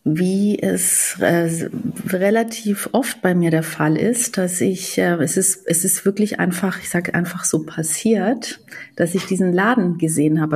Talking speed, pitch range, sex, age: 170 wpm, 170-210 Hz, female, 40-59